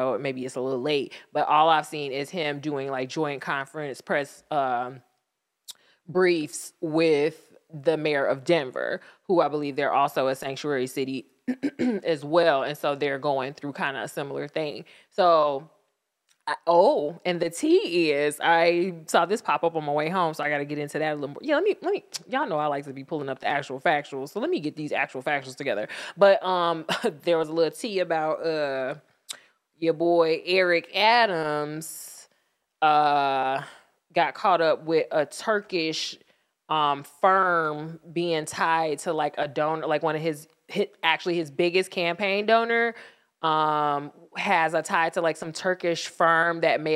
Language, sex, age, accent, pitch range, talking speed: English, female, 20-39, American, 145-170 Hz, 180 wpm